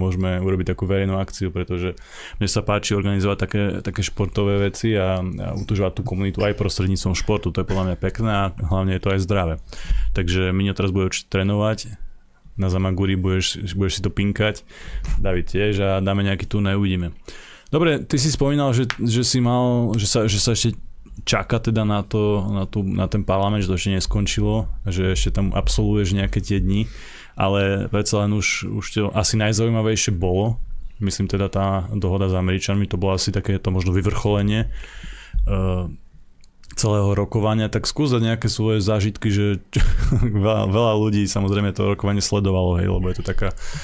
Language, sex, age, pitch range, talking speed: Slovak, male, 20-39, 95-105 Hz, 175 wpm